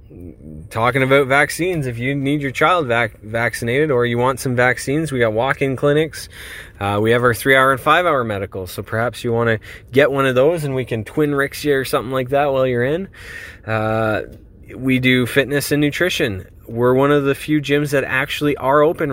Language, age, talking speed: English, 20-39, 200 wpm